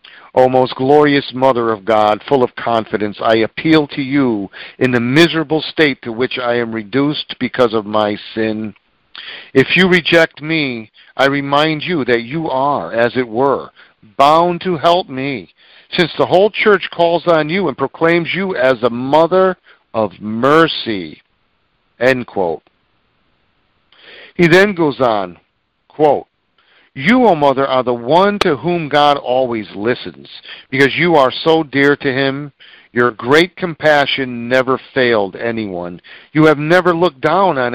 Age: 50-69